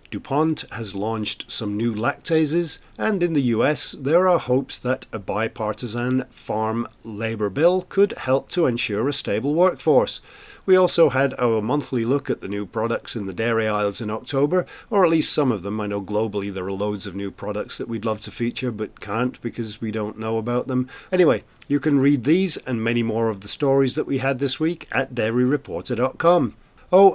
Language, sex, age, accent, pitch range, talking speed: English, male, 50-69, British, 110-140 Hz, 195 wpm